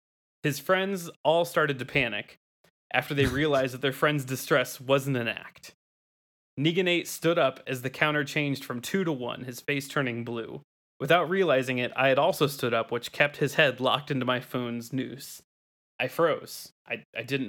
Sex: male